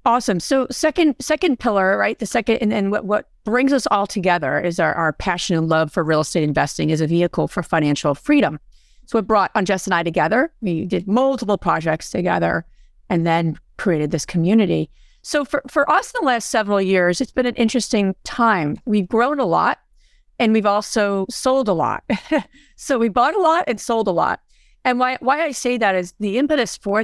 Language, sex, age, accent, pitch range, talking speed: English, female, 40-59, American, 175-245 Hz, 205 wpm